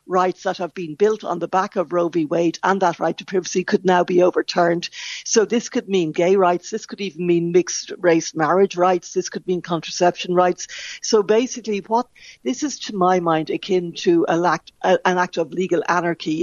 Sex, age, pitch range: female, 60-79, 170-205 Hz